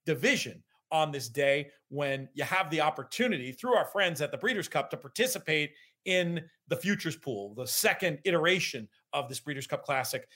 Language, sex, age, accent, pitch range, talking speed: English, male, 40-59, American, 130-170 Hz, 175 wpm